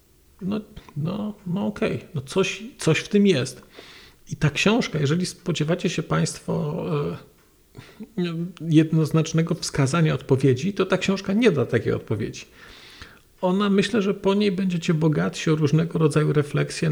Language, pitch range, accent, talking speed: Polish, 140-185 Hz, native, 140 wpm